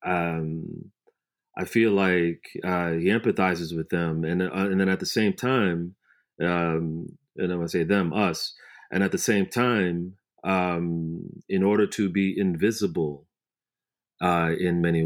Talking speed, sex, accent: 150 wpm, male, American